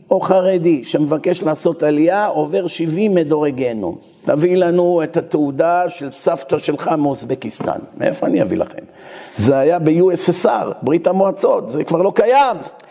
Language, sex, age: Hebrew, male, 50-69